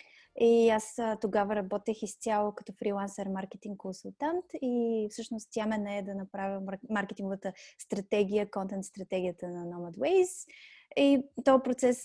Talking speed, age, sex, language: 110 wpm, 20-39, female, Bulgarian